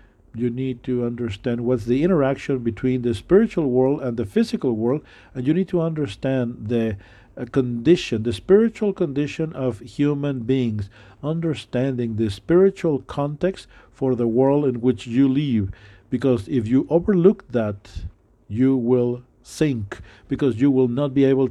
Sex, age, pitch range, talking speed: male, 50-69, 115-145 Hz, 150 wpm